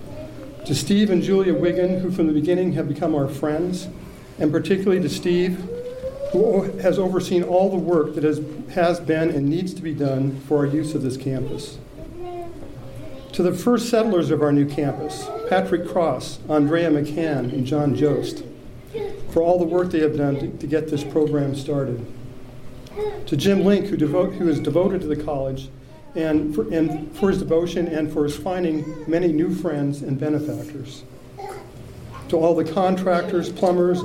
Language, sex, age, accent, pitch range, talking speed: English, male, 50-69, American, 145-175 Hz, 160 wpm